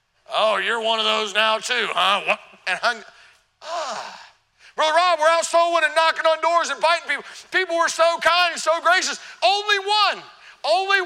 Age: 40-59